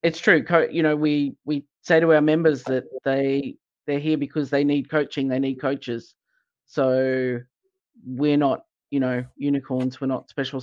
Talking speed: 175 wpm